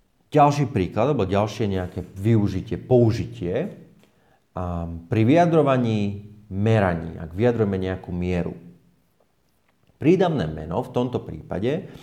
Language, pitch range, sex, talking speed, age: Slovak, 90-120 Hz, male, 95 wpm, 30-49